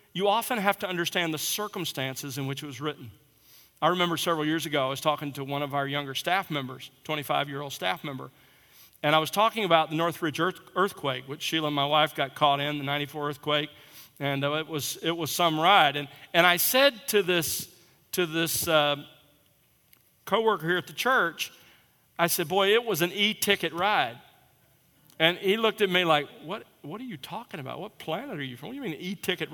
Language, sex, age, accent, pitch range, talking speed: English, male, 50-69, American, 150-200 Hz, 205 wpm